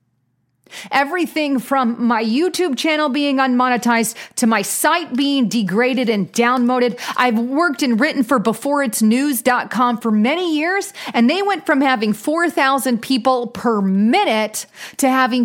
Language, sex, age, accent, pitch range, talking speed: English, female, 30-49, American, 190-255 Hz, 130 wpm